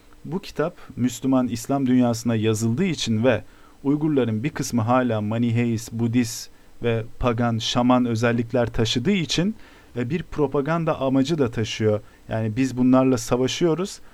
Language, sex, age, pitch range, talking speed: Turkish, male, 40-59, 110-135 Hz, 125 wpm